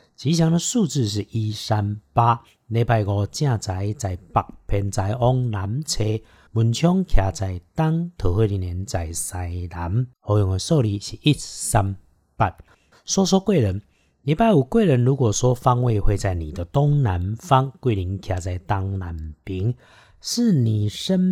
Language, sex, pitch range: Chinese, male, 100-140 Hz